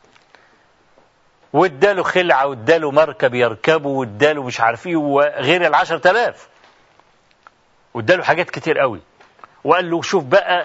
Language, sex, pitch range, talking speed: Arabic, male, 160-205 Hz, 105 wpm